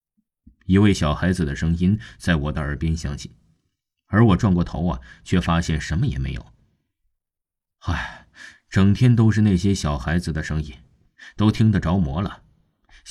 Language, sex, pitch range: Chinese, male, 75-125 Hz